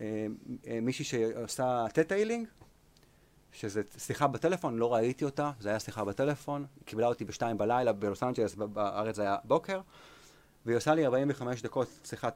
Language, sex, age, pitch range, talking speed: Hebrew, male, 30-49, 110-145 Hz, 145 wpm